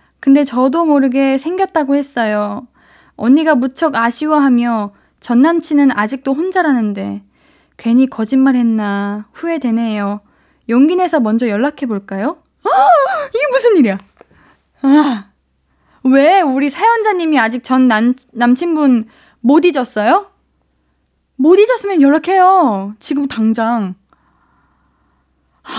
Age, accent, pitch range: 20-39, native, 220-315 Hz